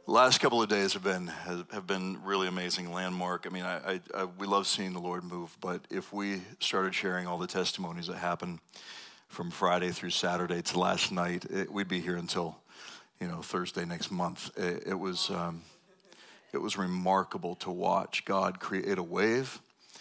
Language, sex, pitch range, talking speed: English, male, 90-95 Hz, 185 wpm